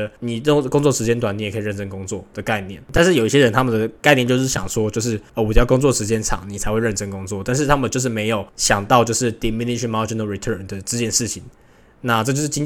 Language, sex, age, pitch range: Chinese, male, 10-29, 105-125 Hz